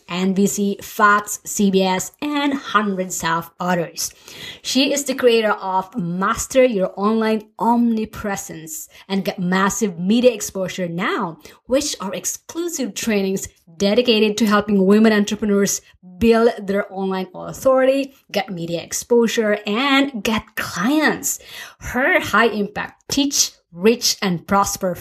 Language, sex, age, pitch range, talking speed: English, female, 30-49, 190-230 Hz, 115 wpm